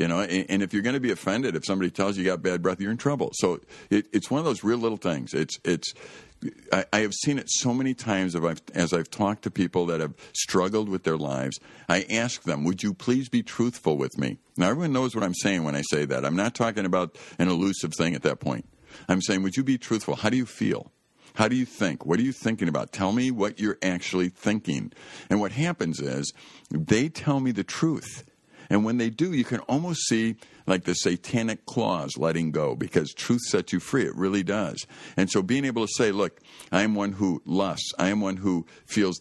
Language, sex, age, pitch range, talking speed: English, male, 50-69, 90-120 Hz, 235 wpm